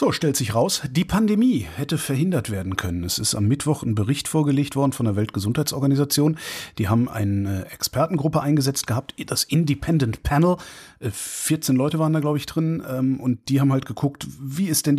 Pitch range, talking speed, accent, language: 115-150 Hz, 180 wpm, German, German